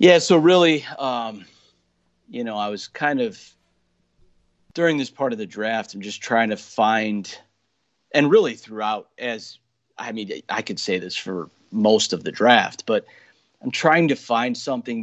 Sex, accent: male, American